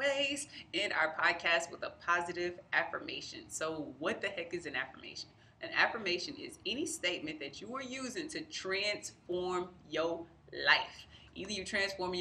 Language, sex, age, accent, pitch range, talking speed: English, female, 20-39, American, 160-200 Hz, 150 wpm